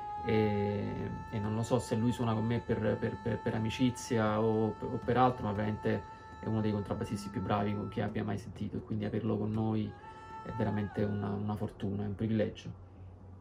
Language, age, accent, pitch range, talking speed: Italian, 30-49, native, 105-125 Hz, 200 wpm